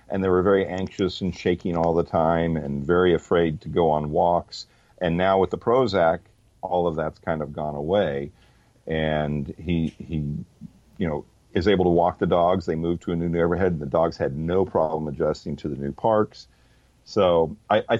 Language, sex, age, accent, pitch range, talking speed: English, male, 50-69, American, 80-100 Hz, 195 wpm